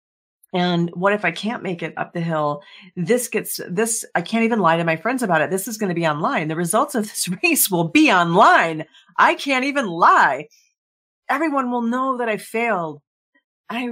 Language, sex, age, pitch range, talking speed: English, female, 40-59, 165-225 Hz, 205 wpm